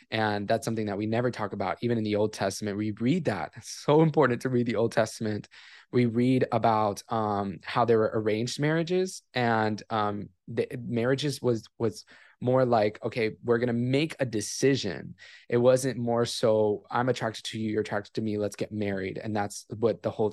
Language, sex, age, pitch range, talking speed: English, male, 20-39, 105-125 Hz, 200 wpm